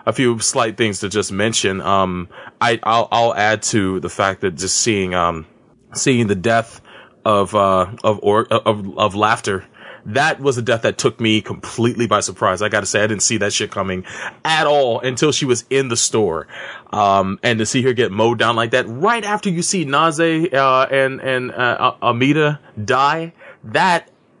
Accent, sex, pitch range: American, male, 95-130 Hz